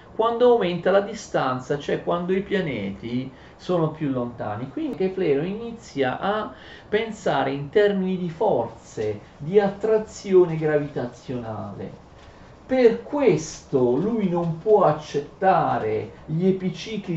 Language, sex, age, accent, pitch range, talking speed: Italian, male, 40-59, native, 135-200 Hz, 110 wpm